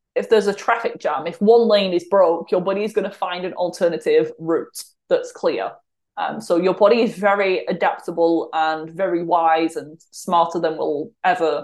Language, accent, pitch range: English, British, 170-220 Hz